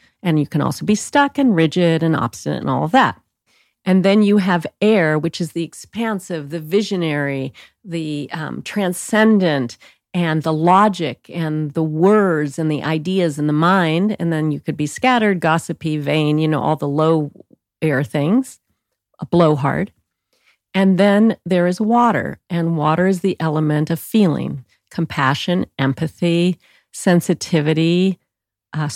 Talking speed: 150 wpm